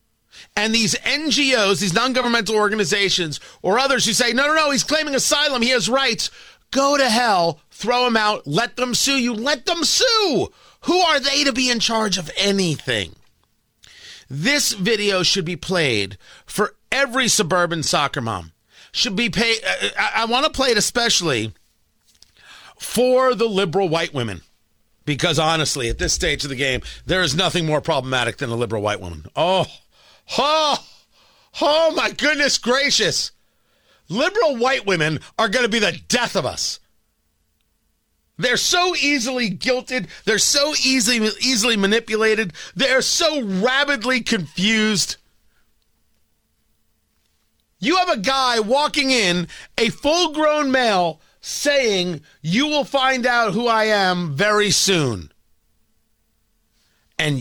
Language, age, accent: English, 40-59, American